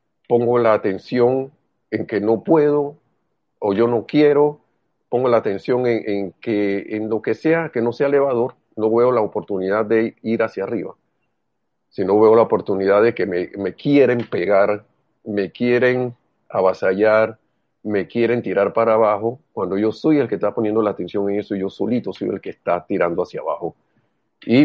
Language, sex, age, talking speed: Spanish, male, 40-59, 180 wpm